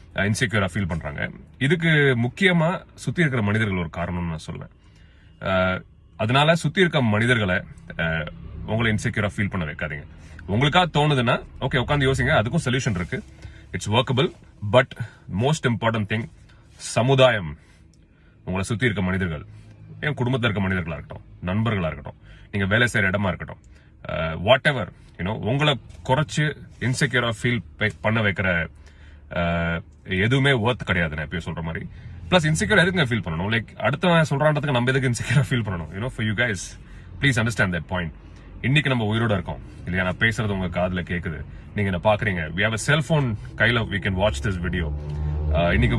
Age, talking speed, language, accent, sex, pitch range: 30-49, 115 wpm, Tamil, native, male, 90-125 Hz